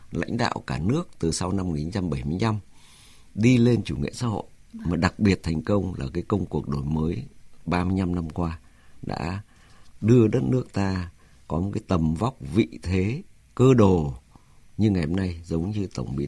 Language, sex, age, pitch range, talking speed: Vietnamese, male, 50-69, 80-110 Hz, 185 wpm